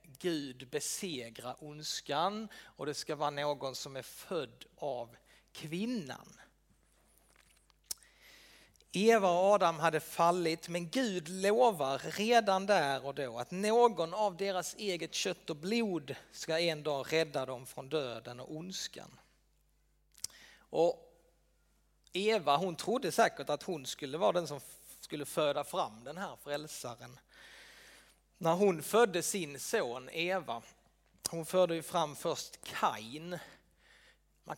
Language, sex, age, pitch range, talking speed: Swedish, male, 30-49, 150-215 Hz, 125 wpm